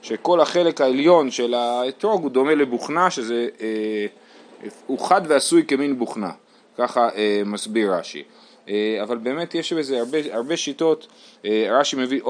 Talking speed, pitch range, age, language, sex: 145 wpm, 110-150 Hz, 30-49, Hebrew, male